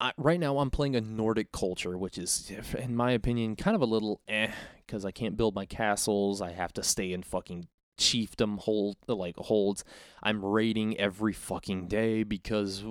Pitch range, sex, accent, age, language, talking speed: 100-125 Hz, male, American, 20-39, English, 170 wpm